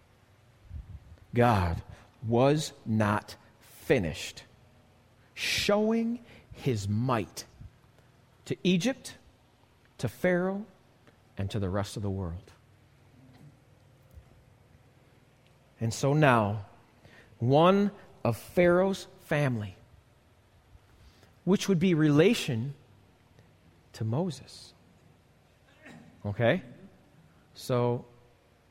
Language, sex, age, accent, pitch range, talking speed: English, male, 40-59, American, 110-140 Hz, 70 wpm